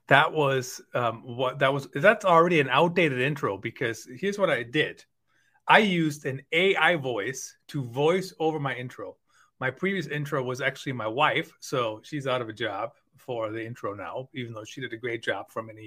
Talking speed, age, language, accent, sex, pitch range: 195 wpm, 30-49, English, American, male, 125-165 Hz